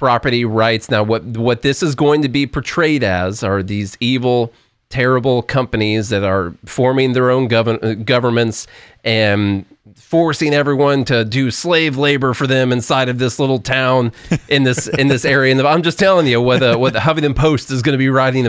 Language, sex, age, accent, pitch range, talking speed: English, male, 30-49, American, 115-140 Hz, 190 wpm